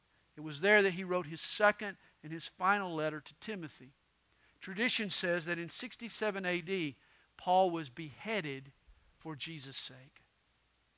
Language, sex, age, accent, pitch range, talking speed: English, male, 50-69, American, 175-265 Hz, 140 wpm